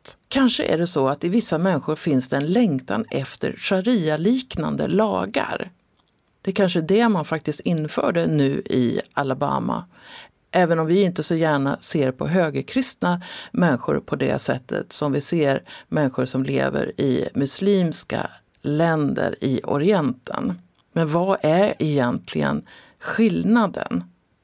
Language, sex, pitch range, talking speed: Swedish, female, 140-195 Hz, 135 wpm